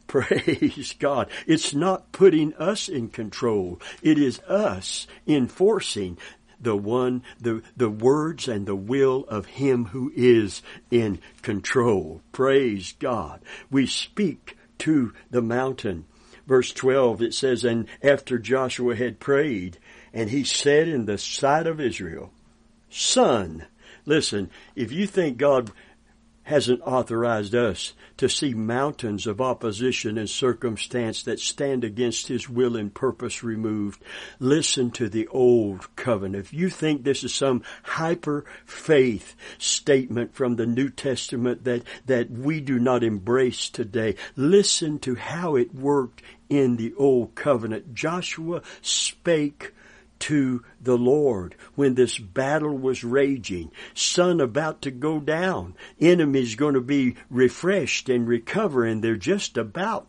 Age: 60-79